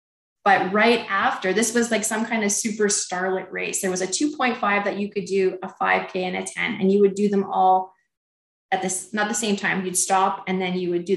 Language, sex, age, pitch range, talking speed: English, female, 20-39, 185-235 Hz, 235 wpm